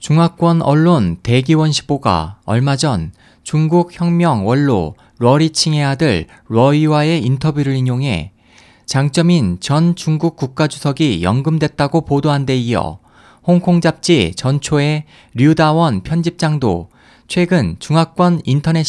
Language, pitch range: Korean, 125-170 Hz